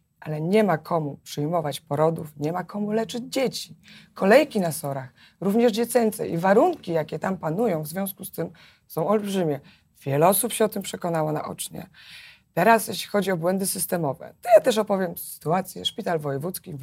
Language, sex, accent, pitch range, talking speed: Polish, female, native, 155-220 Hz, 170 wpm